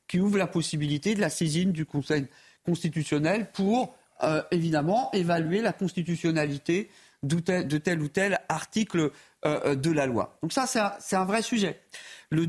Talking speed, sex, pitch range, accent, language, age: 165 wpm, male, 160-210 Hz, French, French, 50-69